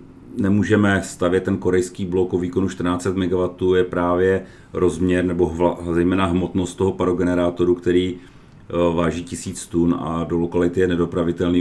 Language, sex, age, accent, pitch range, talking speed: Czech, male, 40-59, native, 85-90 Hz, 145 wpm